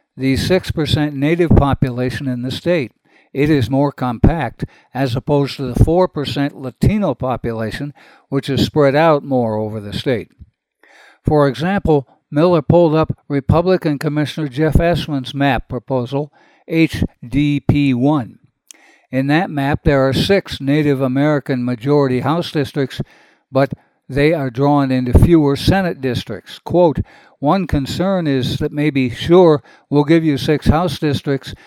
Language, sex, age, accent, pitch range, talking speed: English, male, 60-79, American, 130-155 Hz, 140 wpm